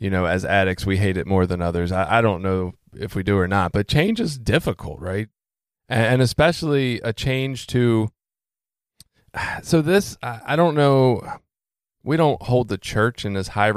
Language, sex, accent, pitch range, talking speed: English, male, American, 100-140 Hz, 190 wpm